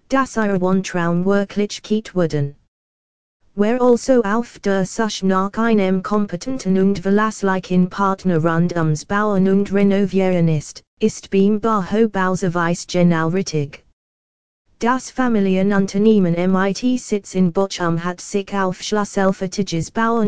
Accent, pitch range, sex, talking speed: British, 175-210 Hz, female, 125 wpm